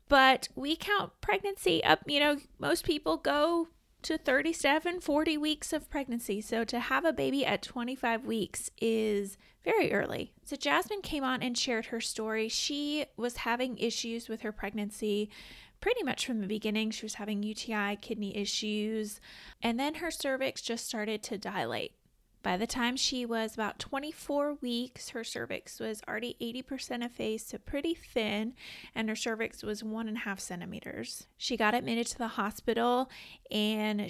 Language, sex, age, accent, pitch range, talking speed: English, female, 20-39, American, 210-260 Hz, 165 wpm